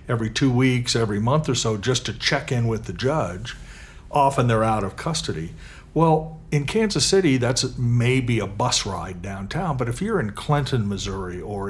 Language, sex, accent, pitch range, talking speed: English, male, American, 110-140 Hz, 185 wpm